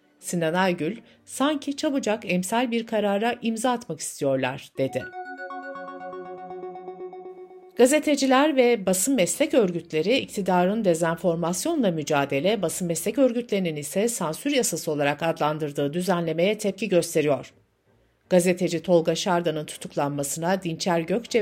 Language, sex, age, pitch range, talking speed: Turkish, female, 60-79, 165-230 Hz, 100 wpm